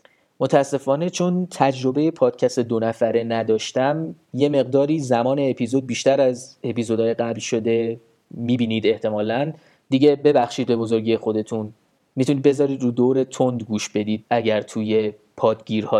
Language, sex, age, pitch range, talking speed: Persian, male, 30-49, 115-145 Hz, 120 wpm